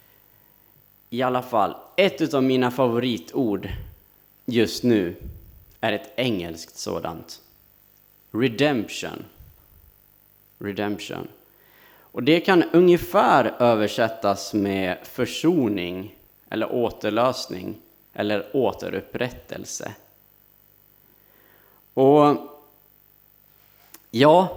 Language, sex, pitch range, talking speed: Swedish, male, 100-145 Hz, 70 wpm